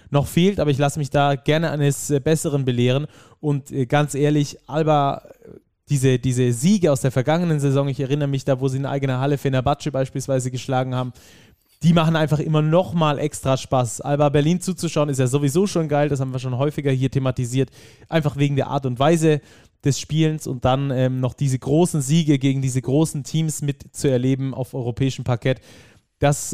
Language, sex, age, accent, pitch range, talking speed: German, male, 20-39, German, 130-150 Hz, 190 wpm